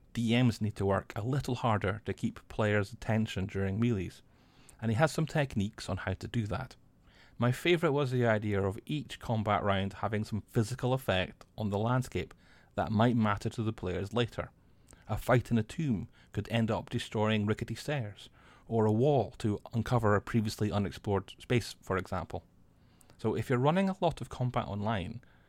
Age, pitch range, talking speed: 30-49, 100-125 Hz, 180 wpm